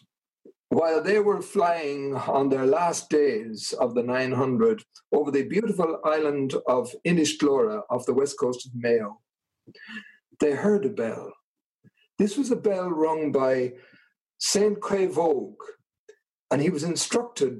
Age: 50-69